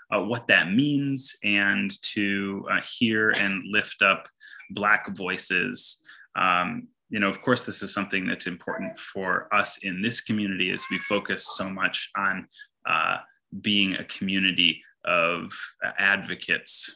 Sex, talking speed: male, 140 wpm